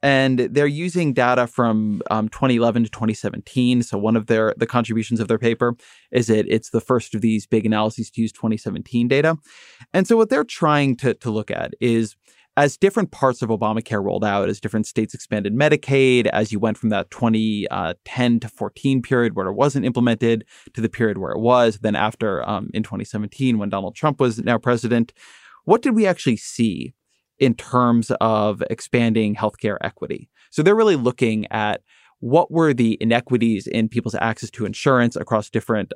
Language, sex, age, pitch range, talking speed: English, male, 20-39, 110-130 Hz, 185 wpm